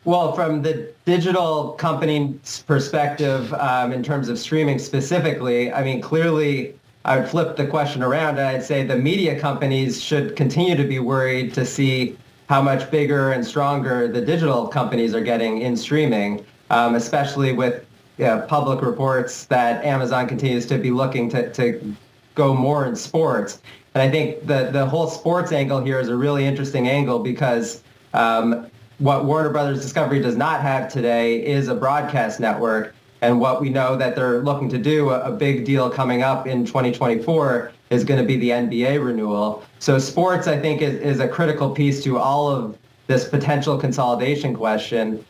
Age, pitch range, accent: 30-49, 125-145 Hz, American